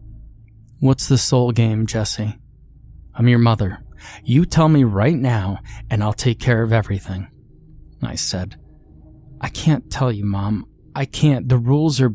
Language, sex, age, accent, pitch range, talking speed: English, male, 30-49, American, 105-130 Hz, 155 wpm